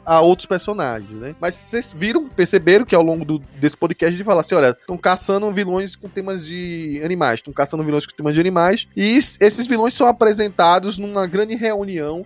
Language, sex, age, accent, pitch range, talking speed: Portuguese, male, 20-39, Brazilian, 155-205 Hz, 200 wpm